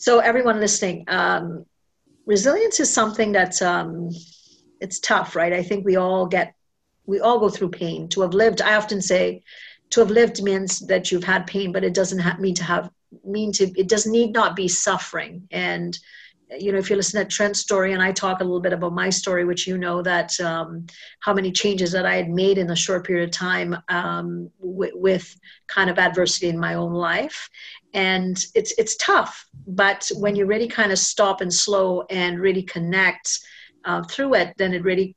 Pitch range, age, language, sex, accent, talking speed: 170-200 Hz, 50-69, English, female, American, 200 wpm